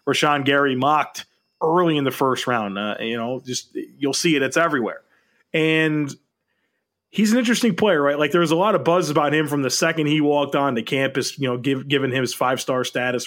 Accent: American